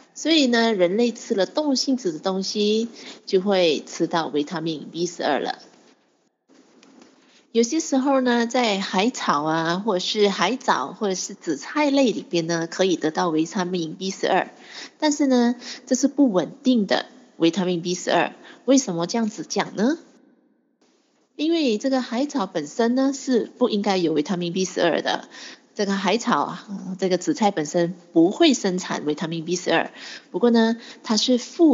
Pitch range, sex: 180-255 Hz, female